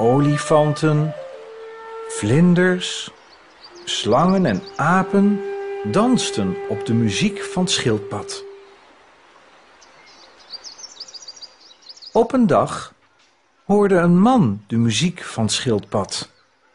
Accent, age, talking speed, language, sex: Dutch, 50-69, 75 wpm, Dutch, male